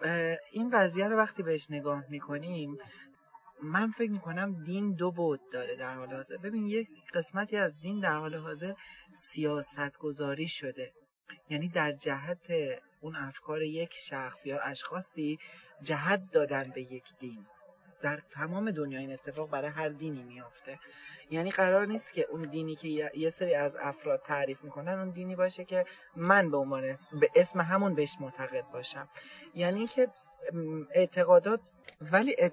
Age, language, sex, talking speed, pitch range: 40-59, English, male, 150 wpm, 145-195 Hz